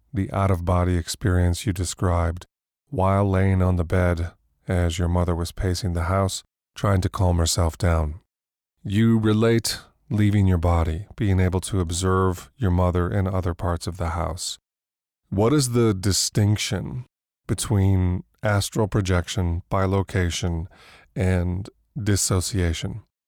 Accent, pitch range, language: American, 85-100 Hz, English